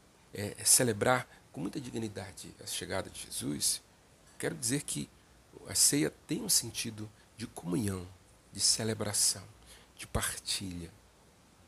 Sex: male